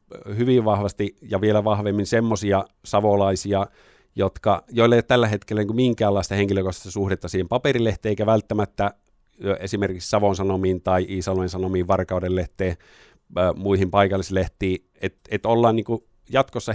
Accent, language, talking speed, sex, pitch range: native, Finnish, 120 wpm, male, 95-110 Hz